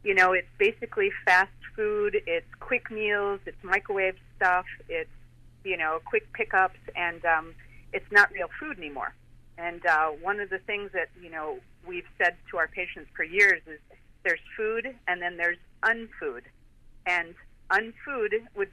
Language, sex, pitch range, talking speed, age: English, female, 165-225 Hz, 160 wpm, 40-59